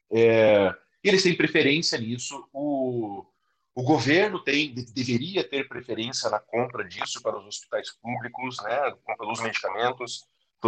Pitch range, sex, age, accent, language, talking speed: 120-155 Hz, male, 40-59, Brazilian, Portuguese, 135 wpm